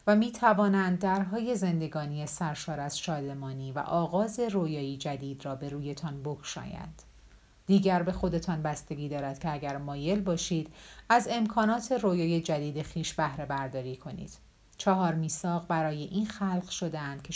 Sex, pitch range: female, 150-195 Hz